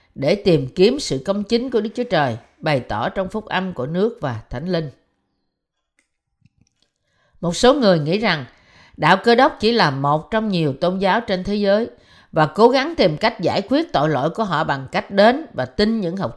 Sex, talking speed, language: female, 205 wpm, Vietnamese